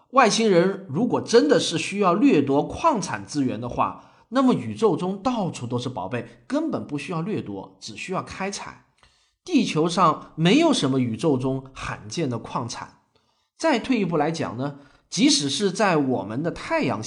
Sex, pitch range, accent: male, 130-215 Hz, native